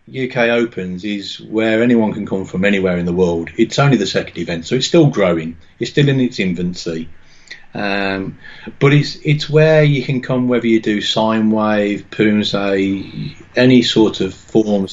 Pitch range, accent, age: 95-120 Hz, British, 40-59